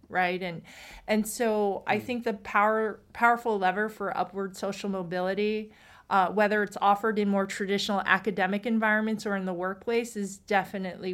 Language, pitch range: English, 190-220 Hz